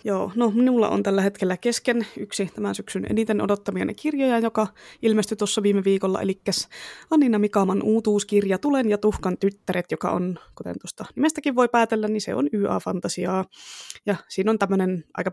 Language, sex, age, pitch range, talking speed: Finnish, female, 20-39, 185-215 Hz, 165 wpm